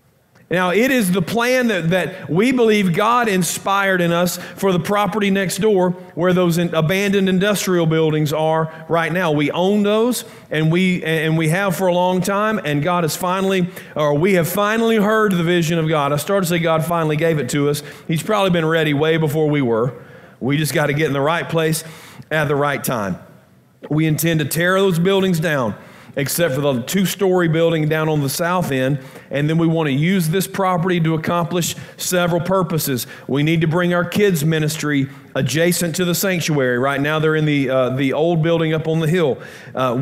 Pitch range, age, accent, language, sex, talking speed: 150-180 Hz, 40-59, American, English, male, 205 wpm